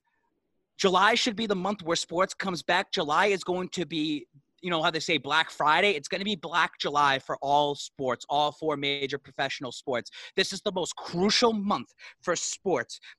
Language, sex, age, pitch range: English, male, 30-49, 150-190 Hz